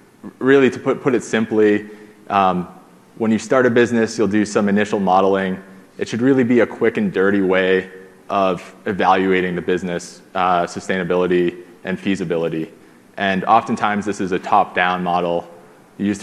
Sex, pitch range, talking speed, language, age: male, 90-110 Hz, 155 wpm, English, 20-39